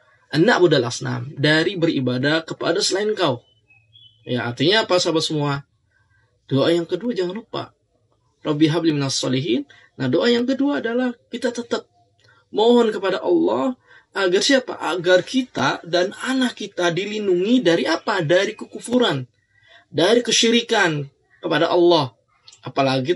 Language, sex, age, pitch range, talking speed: English, male, 20-39, 115-175 Hz, 125 wpm